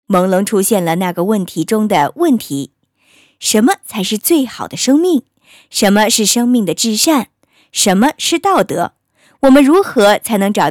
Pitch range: 190-280 Hz